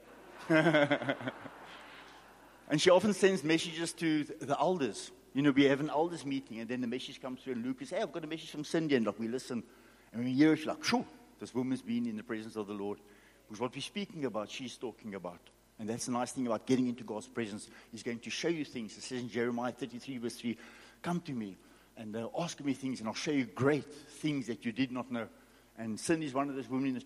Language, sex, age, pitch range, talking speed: English, male, 60-79, 115-155 Hz, 235 wpm